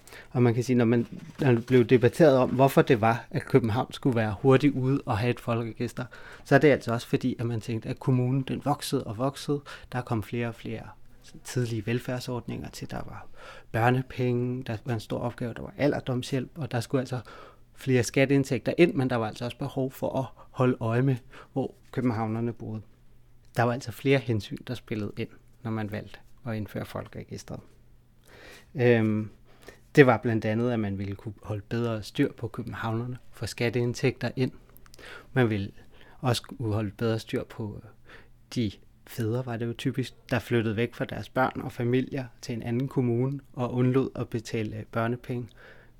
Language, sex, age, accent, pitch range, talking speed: Danish, male, 30-49, native, 115-130 Hz, 185 wpm